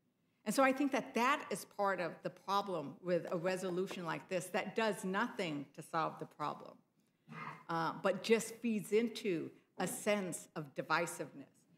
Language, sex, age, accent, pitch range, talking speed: English, female, 60-79, American, 170-225 Hz, 165 wpm